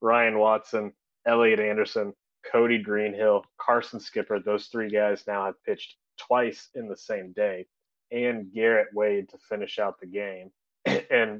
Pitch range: 95-115 Hz